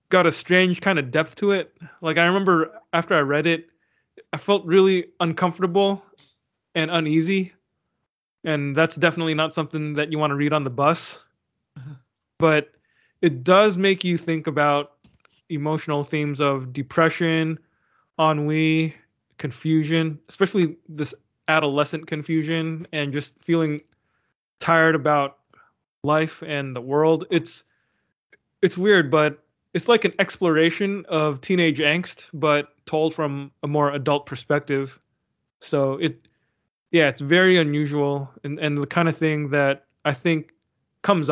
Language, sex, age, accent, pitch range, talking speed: English, male, 20-39, American, 145-165 Hz, 135 wpm